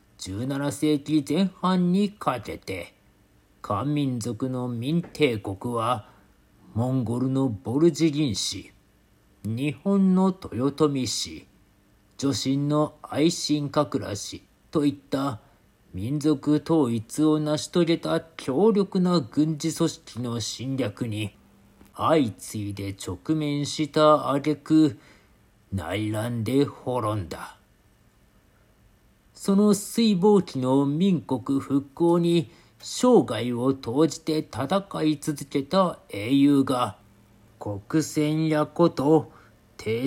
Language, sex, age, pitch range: Japanese, male, 40-59, 110-155 Hz